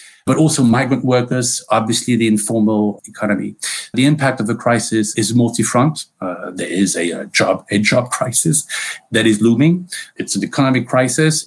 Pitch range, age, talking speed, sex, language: 110-130 Hz, 50-69, 160 wpm, male, English